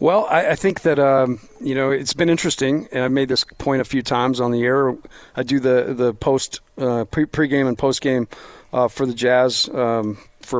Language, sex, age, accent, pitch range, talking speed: English, male, 40-59, American, 125-145 Hz, 215 wpm